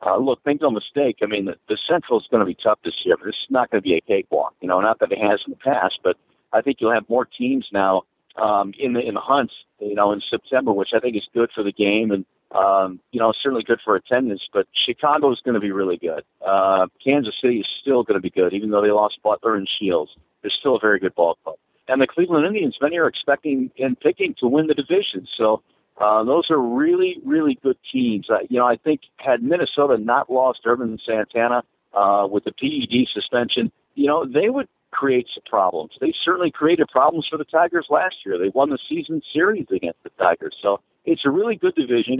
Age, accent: 50-69, American